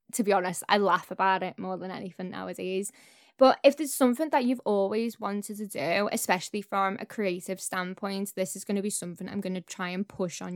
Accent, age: British, 10-29